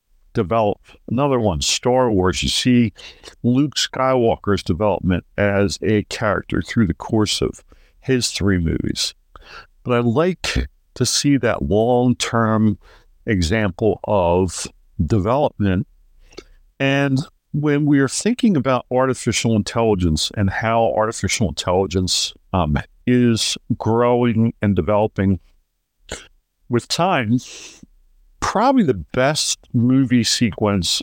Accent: American